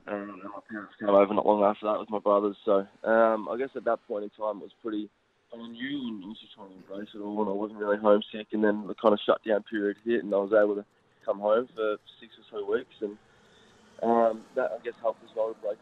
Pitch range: 100-110 Hz